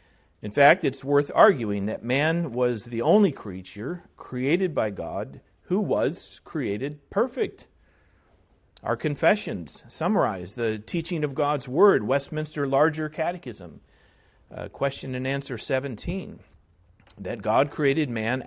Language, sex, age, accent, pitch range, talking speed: English, male, 40-59, American, 95-145 Hz, 125 wpm